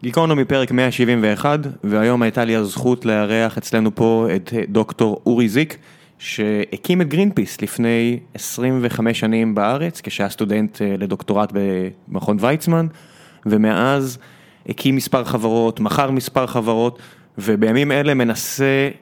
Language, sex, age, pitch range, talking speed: Hebrew, male, 20-39, 115-145 Hz, 115 wpm